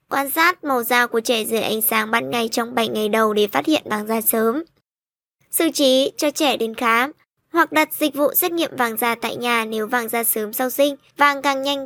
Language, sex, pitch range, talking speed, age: Vietnamese, male, 235-295 Hz, 235 wpm, 20-39